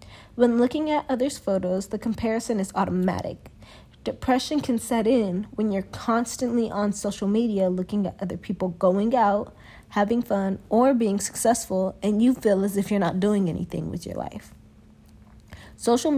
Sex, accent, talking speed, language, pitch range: female, American, 160 wpm, English, 190-235 Hz